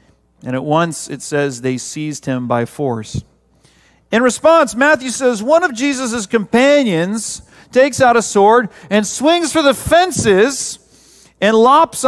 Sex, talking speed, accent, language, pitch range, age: male, 145 wpm, American, English, 155-230 Hz, 40-59